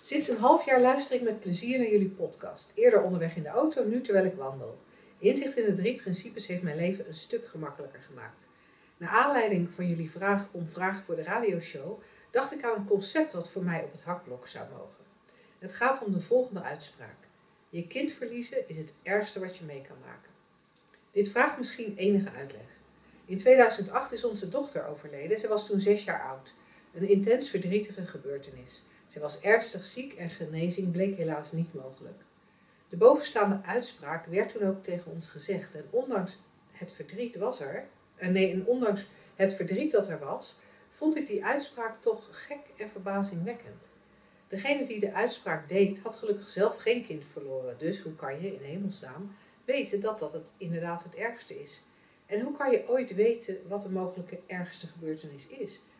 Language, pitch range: Dutch, 175-235 Hz